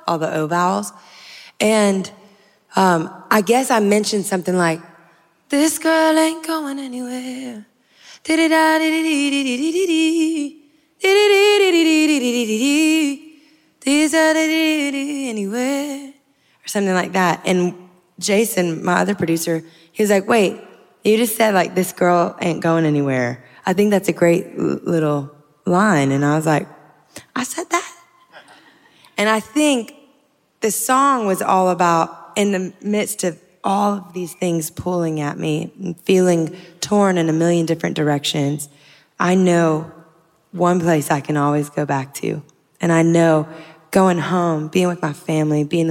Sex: female